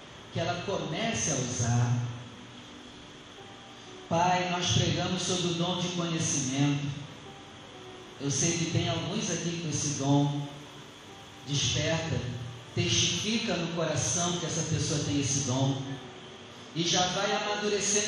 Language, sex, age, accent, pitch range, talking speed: Portuguese, male, 40-59, Brazilian, 135-205 Hz, 120 wpm